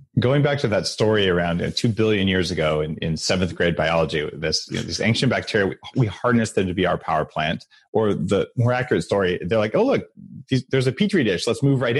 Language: English